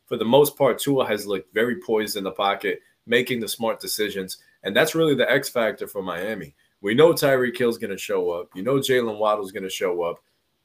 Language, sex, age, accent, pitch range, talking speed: English, male, 20-39, American, 95-135 Hz, 225 wpm